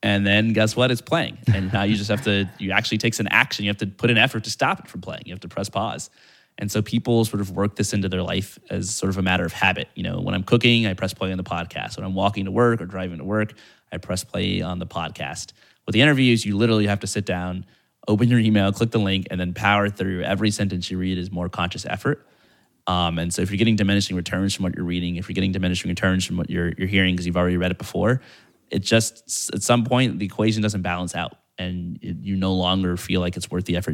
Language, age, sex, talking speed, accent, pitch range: English, 20-39, male, 265 wpm, American, 90-110 Hz